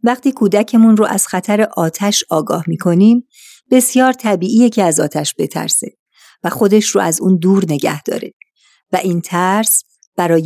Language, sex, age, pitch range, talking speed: Persian, female, 50-69, 170-220 Hz, 150 wpm